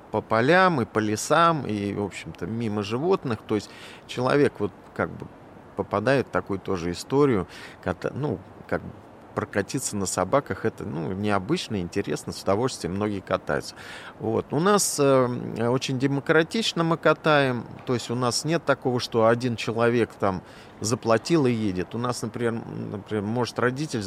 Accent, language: native, Russian